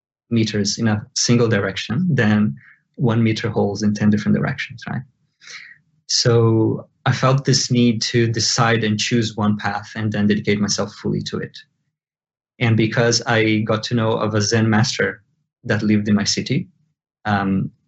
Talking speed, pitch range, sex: 160 wpm, 105-125 Hz, male